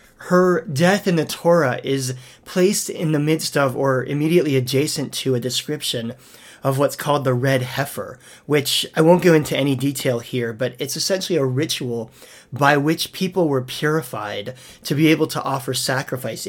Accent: American